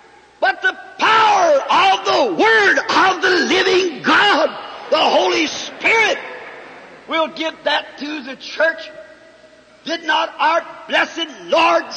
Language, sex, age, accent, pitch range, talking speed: English, male, 50-69, American, 315-360 Hz, 120 wpm